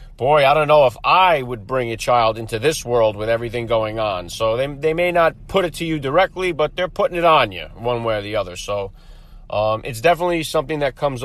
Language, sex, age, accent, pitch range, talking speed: English, male, 30-49, American, 120-175 Hz, 240 wpm